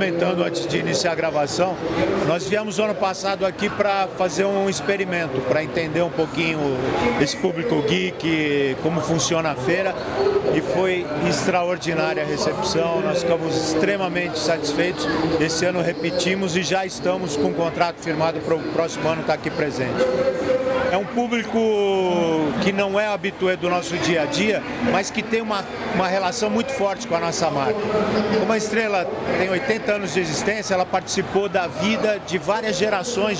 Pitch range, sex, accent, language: 165-205 Hz, male, Brazilian, Portuguese